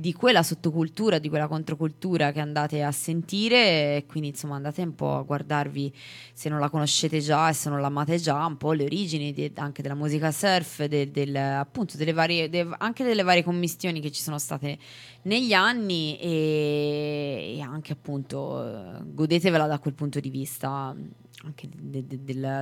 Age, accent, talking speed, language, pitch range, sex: 20-39, native, 170 wpm, Italian, 145-180 Hz, female